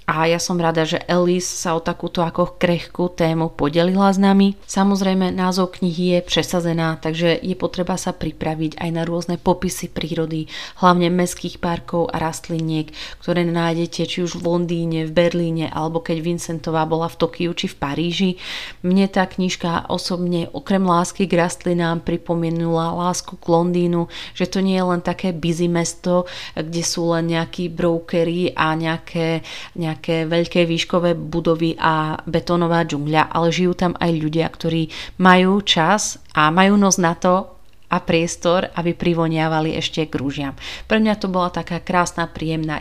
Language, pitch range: Slovak, 160-180 Hz